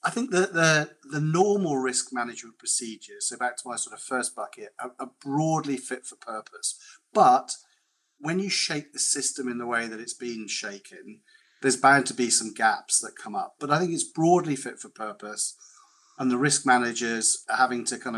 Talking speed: 200 wpm